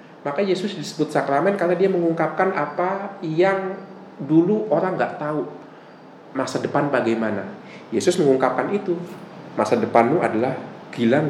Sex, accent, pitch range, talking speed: male, native, 125-180 Hz, 120 wpm